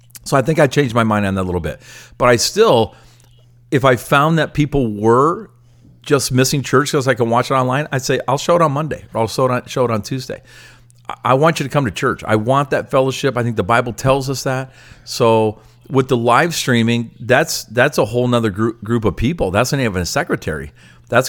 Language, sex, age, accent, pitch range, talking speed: English, male, 50-69, American, 105-130 Hz, 235 wpm